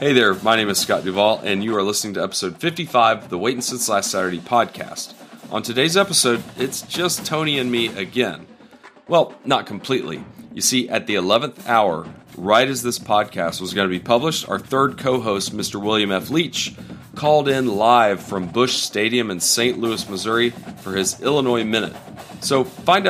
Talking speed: 185 wpm